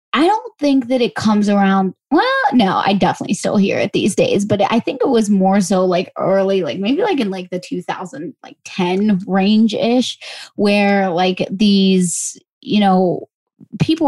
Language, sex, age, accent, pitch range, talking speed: English, female, 20-39, American, 190-230 Hz, 165 wpm